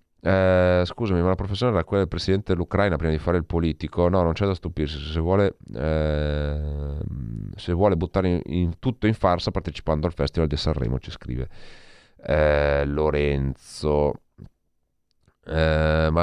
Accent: native